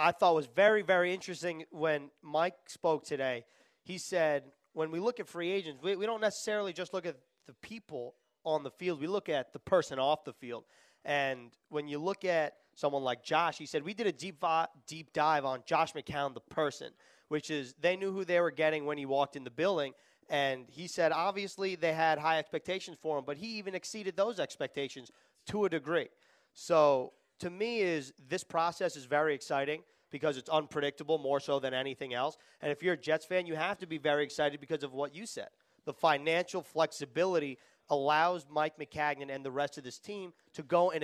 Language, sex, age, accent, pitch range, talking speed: English, male, 30-49, American, 145-175 Hz, 210 wpm